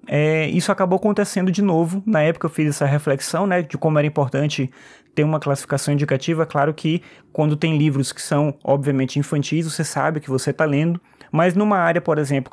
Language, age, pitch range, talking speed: Portuguese, 20-39, 145-190 Hz, 195 wpm